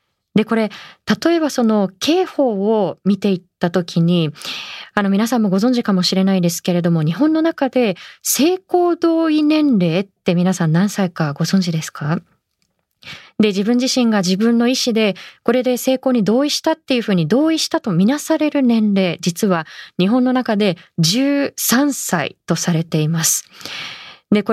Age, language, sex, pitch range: 20-39, Japanese, female, 180-260 Hz